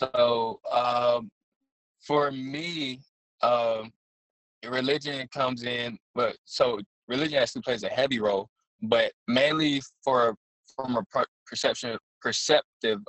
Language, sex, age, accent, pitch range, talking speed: English, male, 20-39, American, 110-135 Hz, 105 wpm